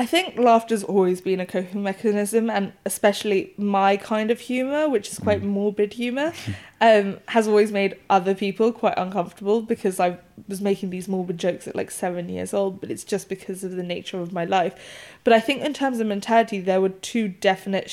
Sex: female